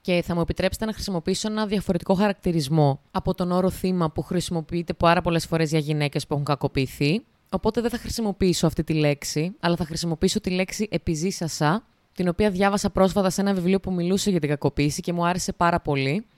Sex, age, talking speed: female, 20-39, 195 wpm